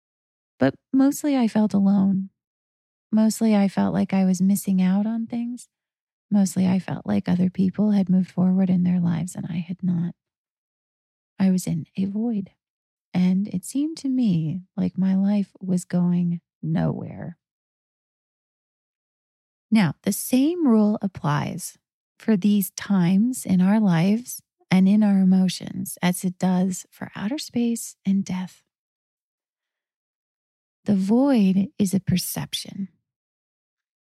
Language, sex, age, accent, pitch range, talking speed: English, female, 30-49, American, 180-210 Hz, 130 wpm